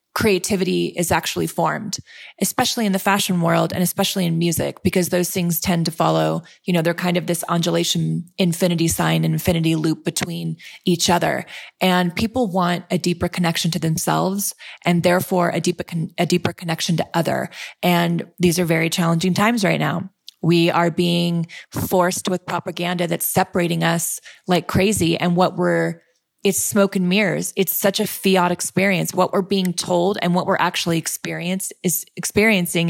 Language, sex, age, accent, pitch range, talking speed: English, female, 20-39, American, 170-190 Hz, 170 wpm